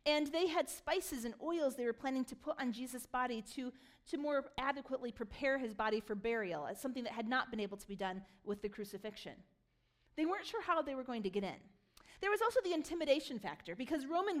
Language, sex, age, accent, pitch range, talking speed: English, female, 40-59, American, 215-295 Hz, 225 wpm